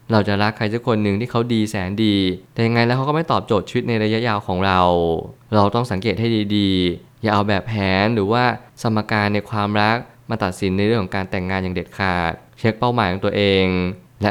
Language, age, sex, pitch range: Thai, 20-39, male, 100-120 Hz